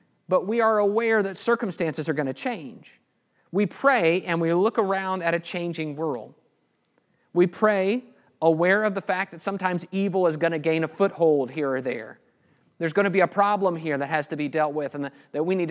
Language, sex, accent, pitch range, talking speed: English, male, American, 155-205 Hz, 210 wpm